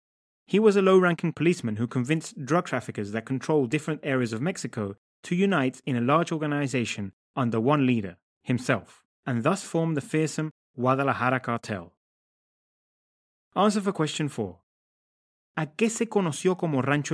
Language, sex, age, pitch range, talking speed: English, male, 30-49, 120-160 Hz, 145 wpm